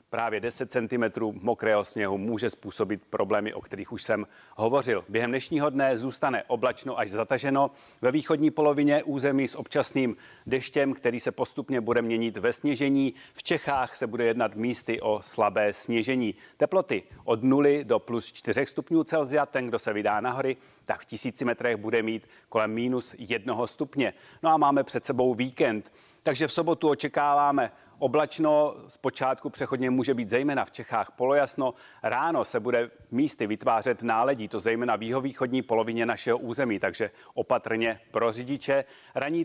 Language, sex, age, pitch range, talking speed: Czech, male, 30-49, 115-145 Hz, 160 wpm